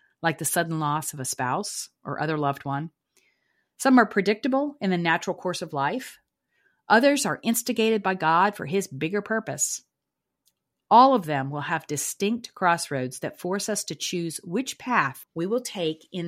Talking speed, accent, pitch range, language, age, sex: 175 wpm, American, 155-215 Hz, English, 50-69, female